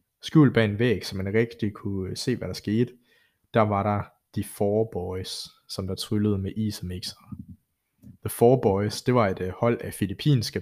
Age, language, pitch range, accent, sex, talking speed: 20-39, Danish, 95-115 Hz, native, male, 185 wpm